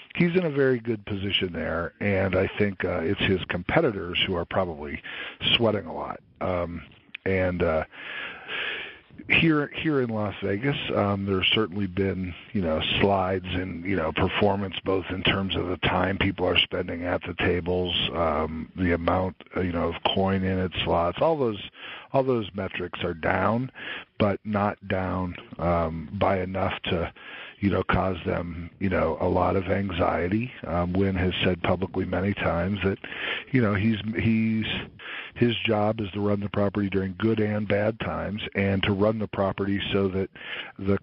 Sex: male